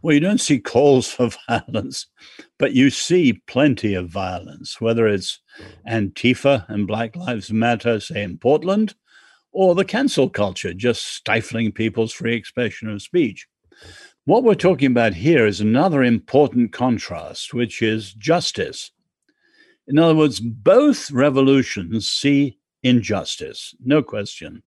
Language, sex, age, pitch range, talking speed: English, male, 60-79, 110-155 Hz, 135 wpm